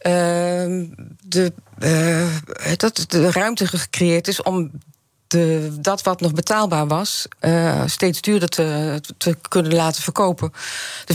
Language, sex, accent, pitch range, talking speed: Dutch, female, Dutch, 160-180 Hz, 130 wpm